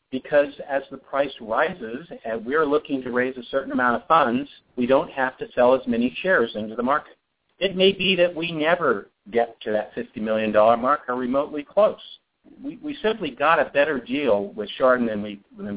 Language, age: English, 50-69